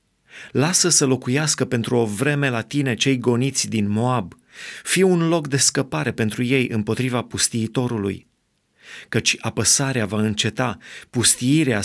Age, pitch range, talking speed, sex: 30-49, 115-135 Hz, 130 wpm, male